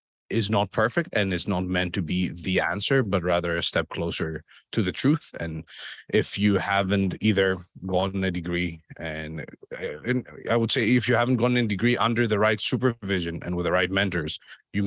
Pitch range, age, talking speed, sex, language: 85-110 Hz, 30-49, 195 wpm, male, English